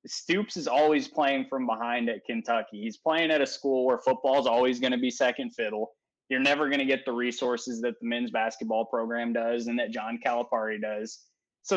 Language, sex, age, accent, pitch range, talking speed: English, male, 20-39, American, 115-140 Hz, 210 wpm